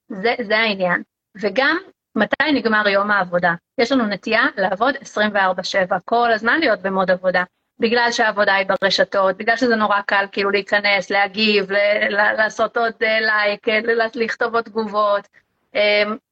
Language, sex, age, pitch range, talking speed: Hebrew, female, 30-49, 205-255 Hz, 140 wpm